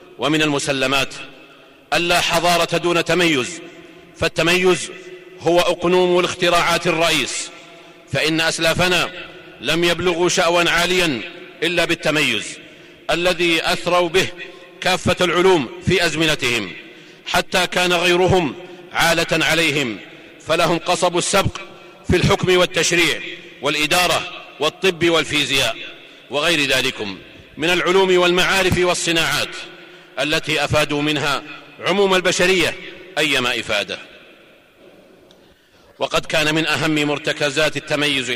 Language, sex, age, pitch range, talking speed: Arabic, male, 50-69, 155-180 Hz, 95 wpm